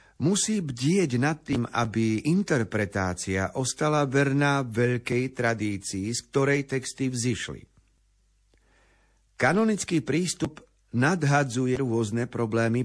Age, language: 50-69, Slovak